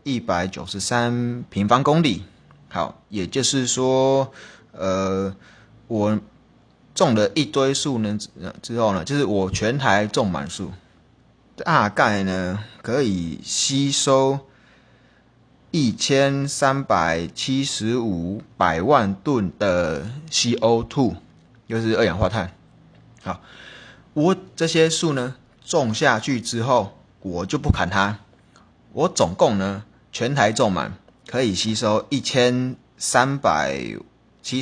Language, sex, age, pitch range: Chinese, male, 20-39, 95-135 Hz